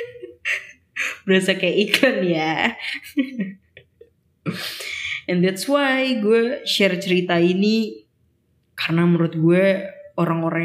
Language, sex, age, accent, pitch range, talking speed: Indonesian, female, 20-39, native, 165-195 Hz, 85 wpm